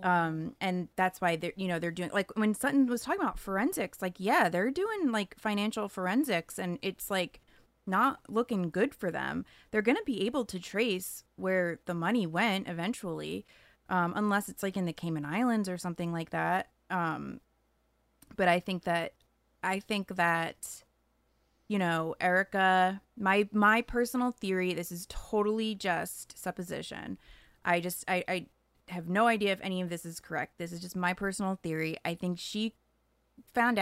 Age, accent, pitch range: 20-39, American, 170-205 Hz